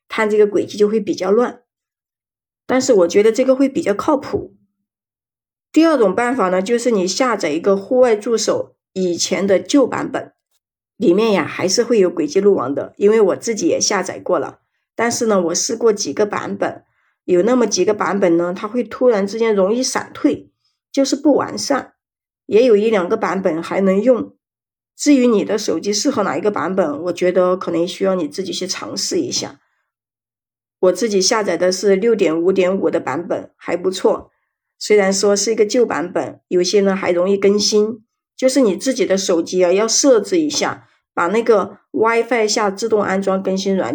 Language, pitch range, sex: Chinese, 185-240 Hz, female